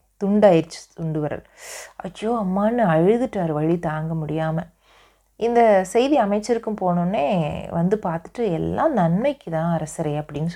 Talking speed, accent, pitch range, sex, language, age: 115 wpm, native, 165-215 Hz, female, Tamil, 30-49